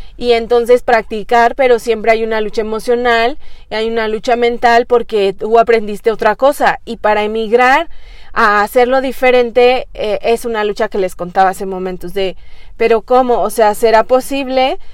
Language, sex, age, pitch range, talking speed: Spanish, female, 30-49, 215-255 Hz, 165 wpm